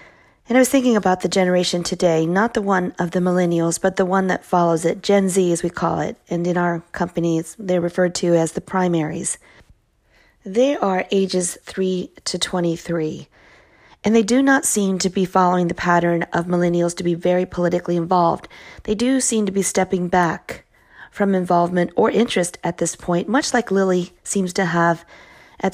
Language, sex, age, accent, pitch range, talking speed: English, female, 40-59, American, 175-195 Hz, 185 wpm